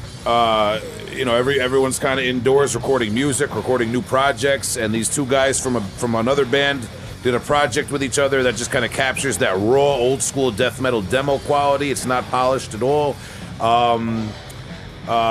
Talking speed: 190 wpm